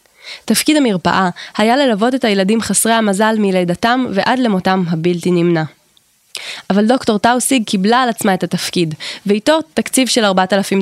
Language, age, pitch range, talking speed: Hebrew, 20-39, 180-235 Hz, 140 wpm